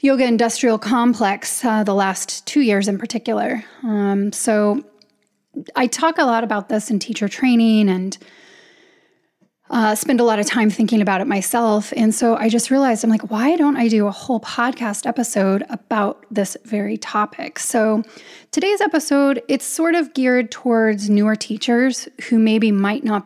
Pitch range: 210-260 Hz